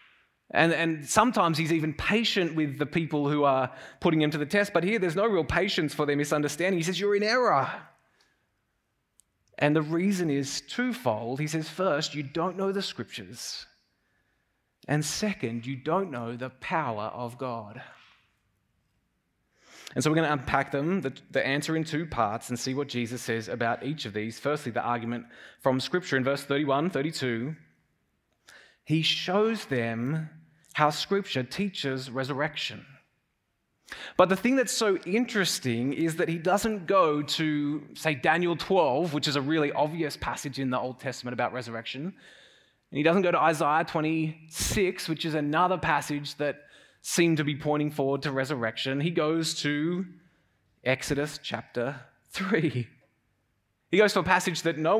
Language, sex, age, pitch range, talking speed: English, male, 20-39, 135-175 Hz, 165 wpm